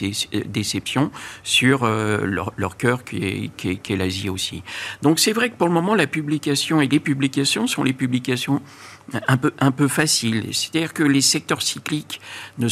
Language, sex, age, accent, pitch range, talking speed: French, male, 50-69, French, 110-145 Hz, 190 wpm